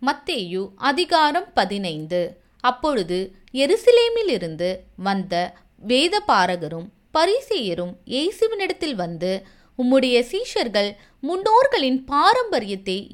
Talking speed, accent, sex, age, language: 65 wpm, native, female, 20-39, Tamil